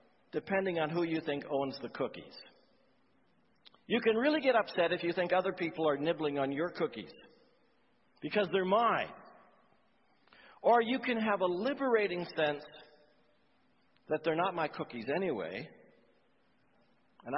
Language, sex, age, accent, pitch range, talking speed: English, male, 60-79, American, 150-210 Hz, 140 wpm